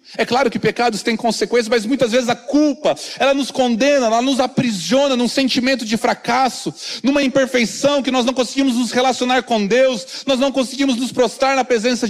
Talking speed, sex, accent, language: 190 wpm, male, Brazilian, Portuguese